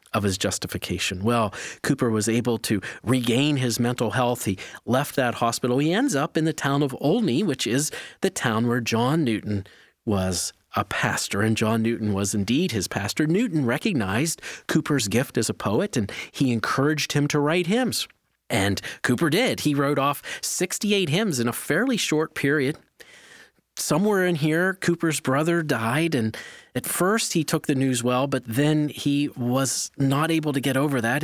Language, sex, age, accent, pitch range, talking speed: English, male, 40-59, American, 115-155 Hz, 175 wpm